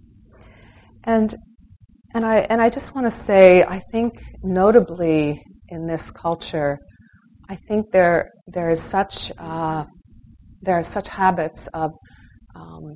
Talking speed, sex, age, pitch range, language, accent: 130 wpm, female, 40-59, 140-170 Hz, English, American